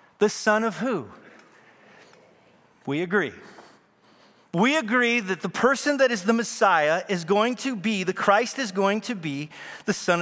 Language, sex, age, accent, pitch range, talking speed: English, male, 40-59, American, 190-250 Hz, 160 wpm